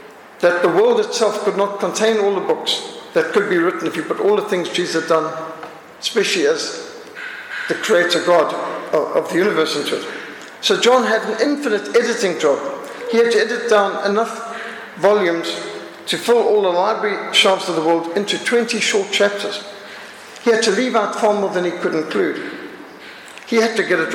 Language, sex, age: English, male, 60-79